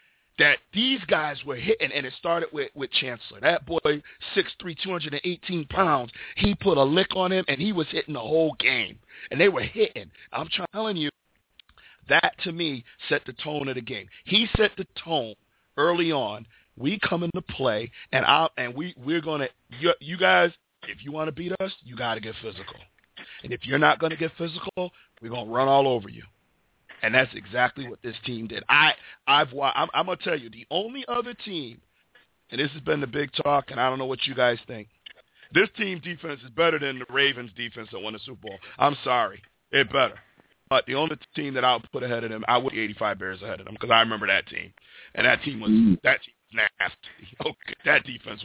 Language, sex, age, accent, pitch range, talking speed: English, male, 40-59, American, 125-175 Hz, 220 wpm